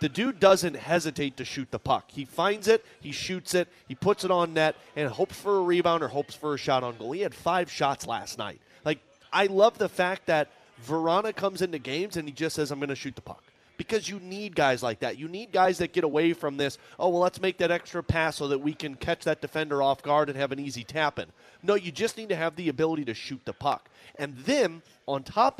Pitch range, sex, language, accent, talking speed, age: 140-185 Hz, male, English, American, 255 wpm, 30-49